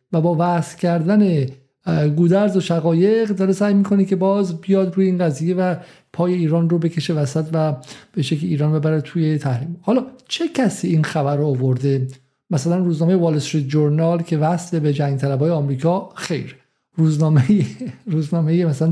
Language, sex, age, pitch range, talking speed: Persian, male, 50-69, 155-190 Hz, 160 wpm